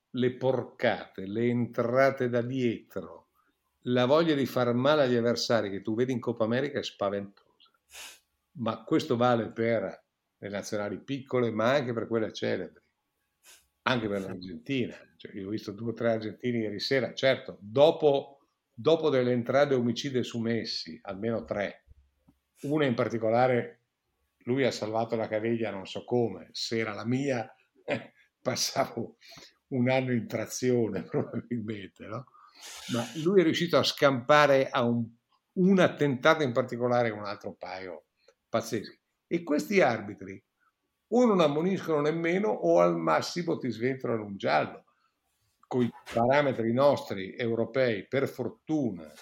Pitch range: 110-135 Hz